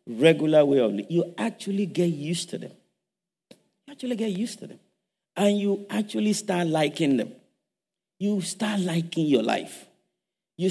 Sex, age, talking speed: male, 50-69, 155 wpm